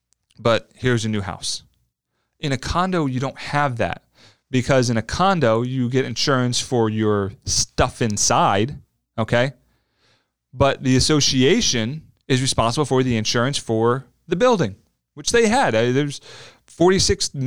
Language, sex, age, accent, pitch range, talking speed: English, male, 30-49, American, 100-140 Hz, 135 wpm